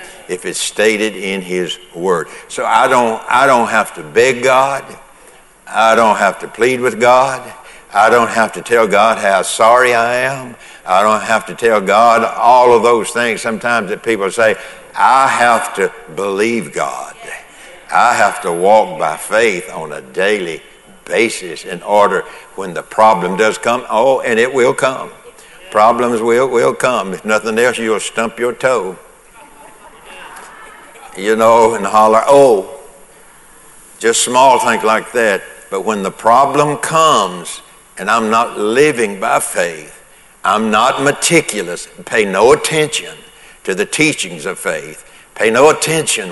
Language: English